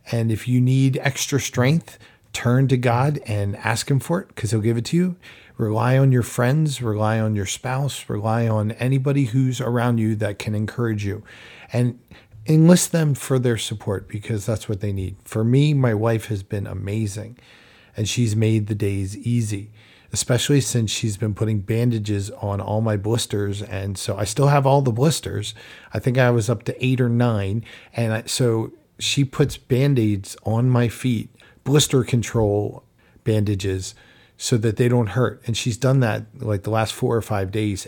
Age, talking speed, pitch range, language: 40-59, 185 wpm, 105-130 Hz, English